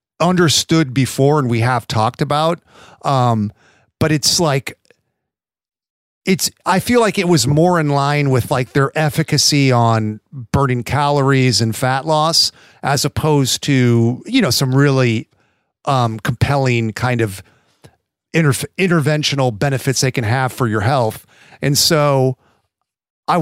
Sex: male